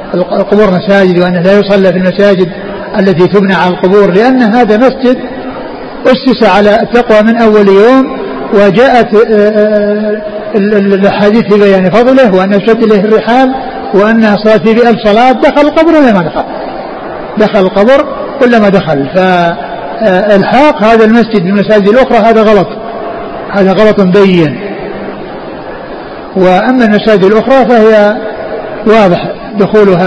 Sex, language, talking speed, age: male, Arabic, 115 wpm, 50-69